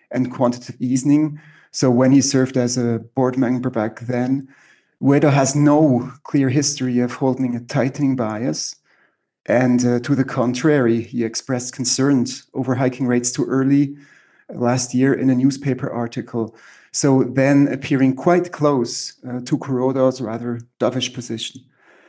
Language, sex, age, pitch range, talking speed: English, male, 30-49, 125-145 Hz, 145 wpm